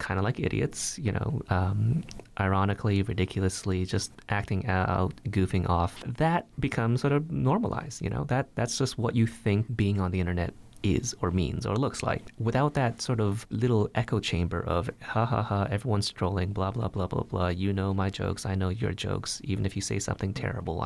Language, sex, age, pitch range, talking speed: English, male, 30-49, 95-120 Hz, 200 wpm